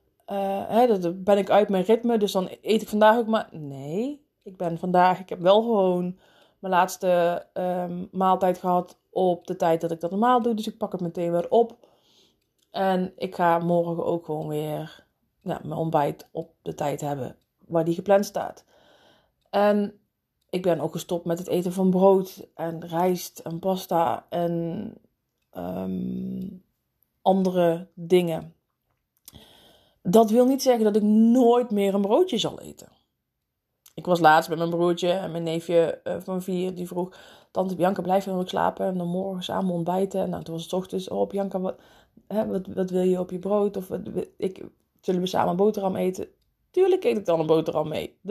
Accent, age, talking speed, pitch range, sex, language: Dutch, 20-39, 175 wpm, 170-215 Hz, female, Dutch